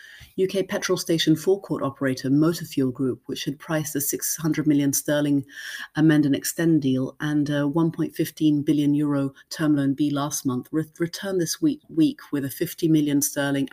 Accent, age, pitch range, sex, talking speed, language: British, 30-49, 135-160 Hz, female, 165 wpm, English